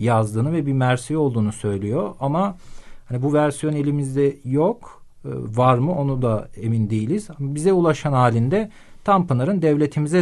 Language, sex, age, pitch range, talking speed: Turkish, male, 40-59, 120-155 Hz, 135 wpm